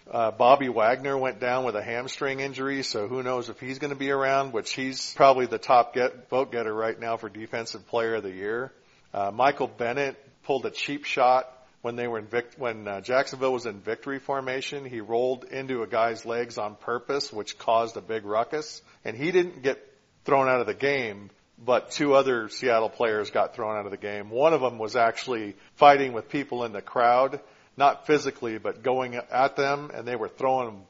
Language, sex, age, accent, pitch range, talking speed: English, male, 50-69, American, 115-135 Hz, 210 wpm